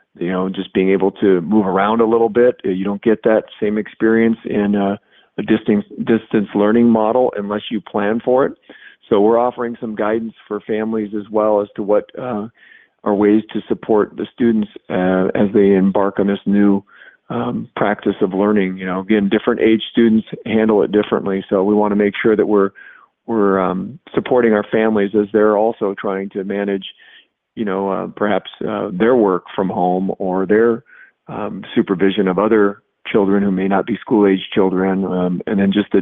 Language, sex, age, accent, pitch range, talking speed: English, male, 40-59, American, 95-110 Hz, 190 wpm